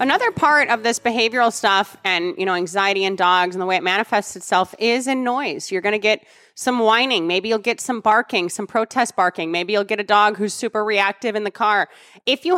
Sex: female